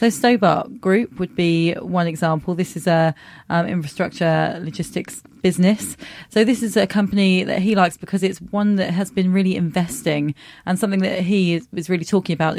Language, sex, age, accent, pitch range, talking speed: English, female, 30-49, British, 160-185 Hz, 185 wpm